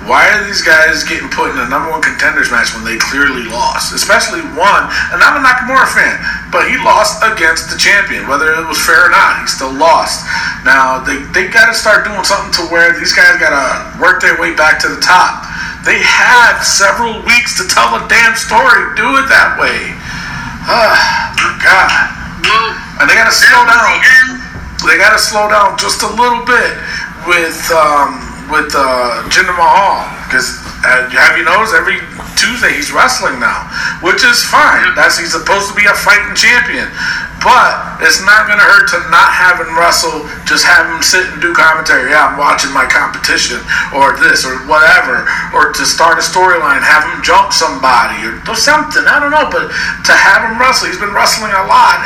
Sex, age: male, 40-59